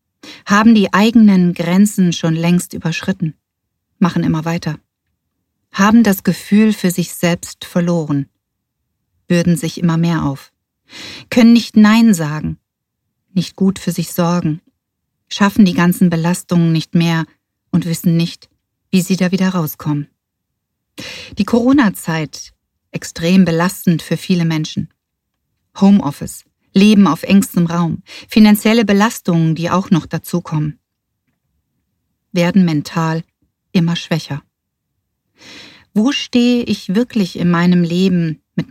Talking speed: 115 wpm